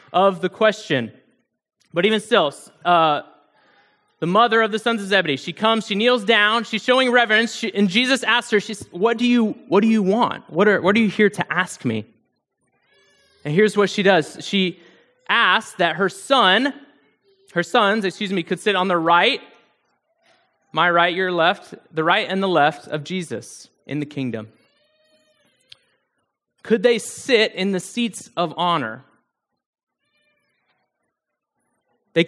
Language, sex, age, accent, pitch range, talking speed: English, male, 20-39, American, 175-235 Hz, 160 wpm